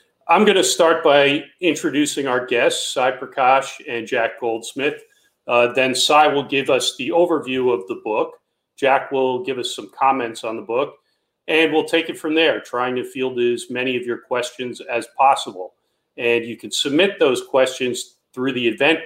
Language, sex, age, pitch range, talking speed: English, male, 40-59, 125-170 Hz, 185 wpm